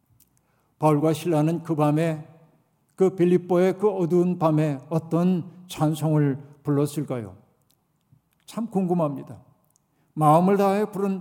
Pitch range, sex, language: 140-165 Hz, male, Korean